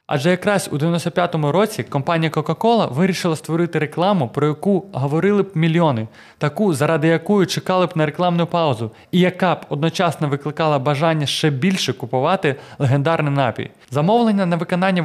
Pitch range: 145-180 Hz